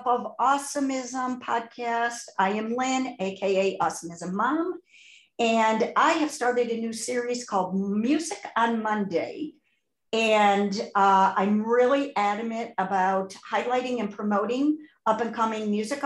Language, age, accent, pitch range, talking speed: English, 50-69, American, 195-245 Hz, 115 wpm